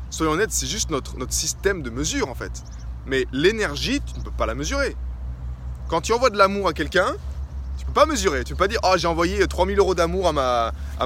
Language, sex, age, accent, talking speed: French, male, 20-39, French, 250 wpm